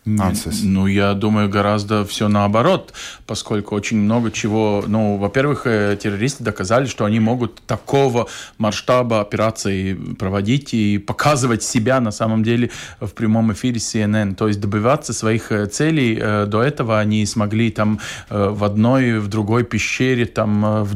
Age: 20-39